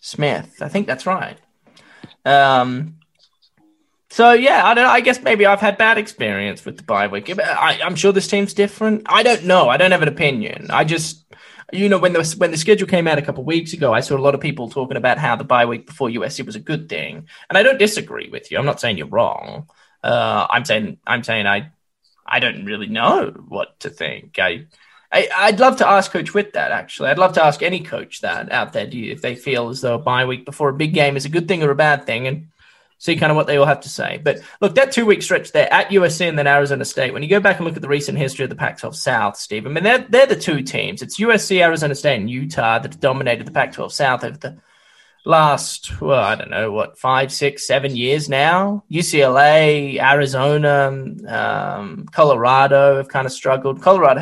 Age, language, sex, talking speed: 10-29, English, male, 235 wpm